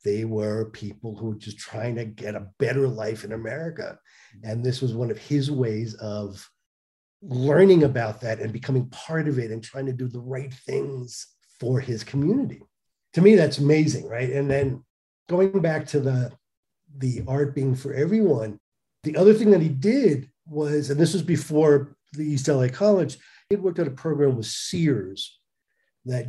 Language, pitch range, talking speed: English, 120-160 Hz, 180 wpm